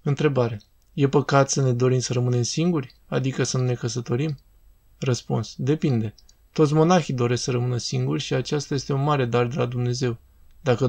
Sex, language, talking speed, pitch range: male, Romanian, 175 wpm, 120-145 Hz